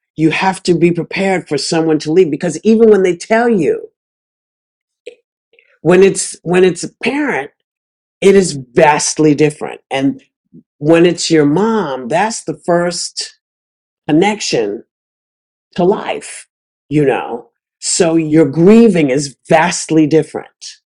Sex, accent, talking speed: male, American, 125 wpm